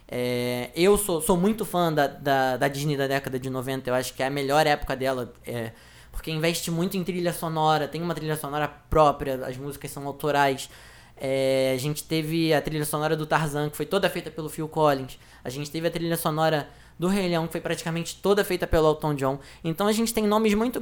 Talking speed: 220 wpm